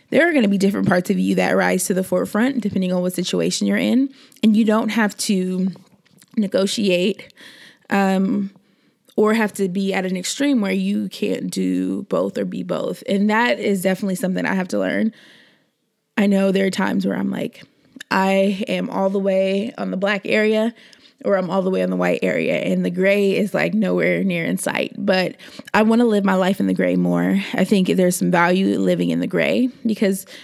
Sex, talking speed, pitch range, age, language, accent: female, 215 wpm, 185-220 Hz, 20-39, English, American